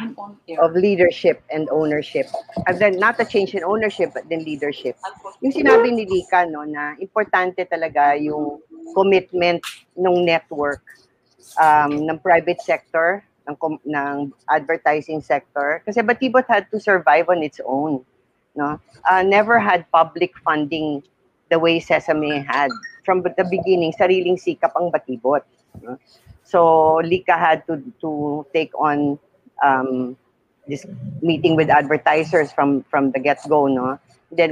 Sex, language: female, Filipino